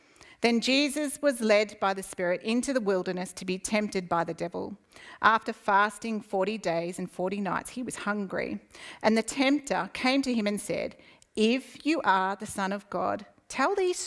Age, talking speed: 40-59, 185 wpm